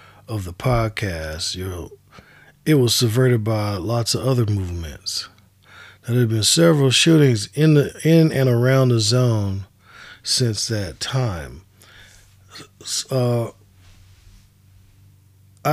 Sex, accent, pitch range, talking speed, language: male, American, 95-125 Hz, 110 wpm, English